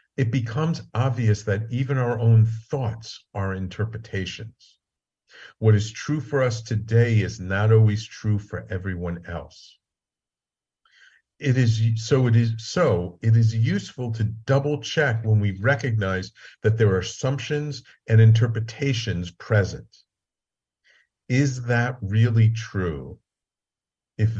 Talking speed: 125 wpm